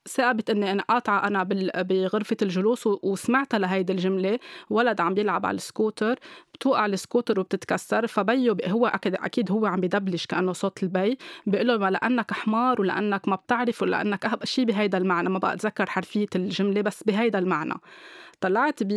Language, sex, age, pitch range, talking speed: Arabic, female, 20-39, 195-235 Hz, 150 wpm